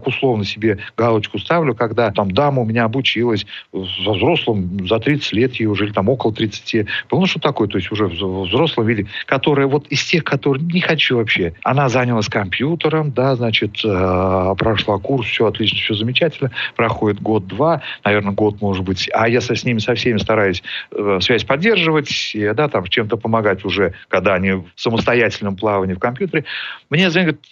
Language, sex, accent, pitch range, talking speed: Russian, male, native, 105-140 Hz, 180 wpm